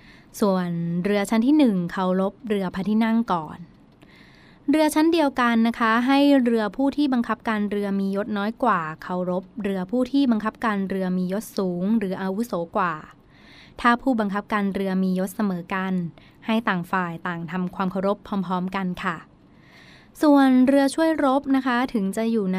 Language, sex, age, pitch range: Thai, female, 20-39, 185-230 Hz